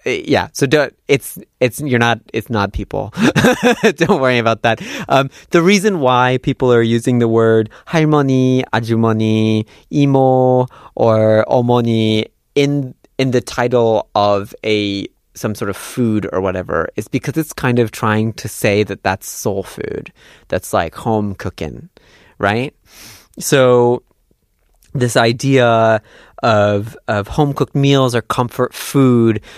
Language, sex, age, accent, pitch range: Korean, male, 30-49, American, 105-130 Hz